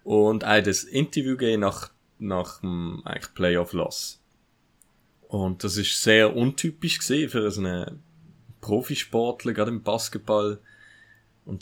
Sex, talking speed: male, 115 wpm